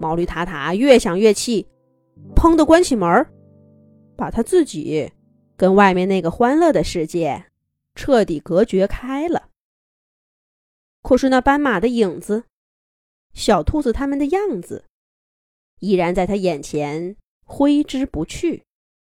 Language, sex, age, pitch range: Chinese, female, 20-39, 175-275 Hz